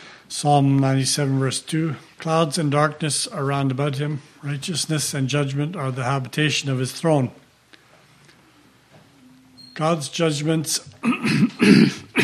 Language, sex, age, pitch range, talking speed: English, male, 60-79, 135-155 Hz, 110 wpm